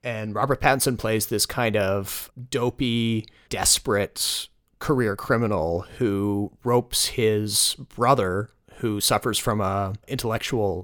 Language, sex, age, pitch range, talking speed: English, male, 30-49, 100-120 Hz, 110 wpm